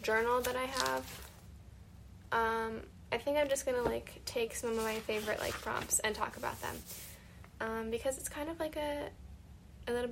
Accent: American